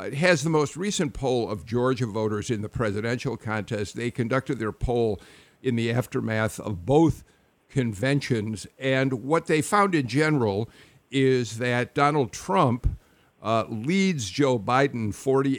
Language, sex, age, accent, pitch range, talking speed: English, male, 50-69, American, 110-140 Hz, 140 wpm